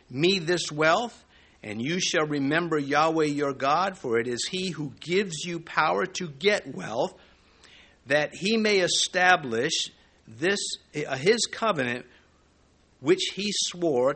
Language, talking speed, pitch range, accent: English, 135 wpm, 140-215 Hz, American